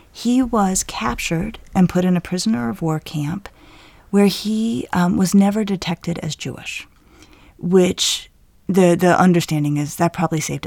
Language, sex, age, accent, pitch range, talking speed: English, female, 30-49, American, 160-200 Hz, 150 wpm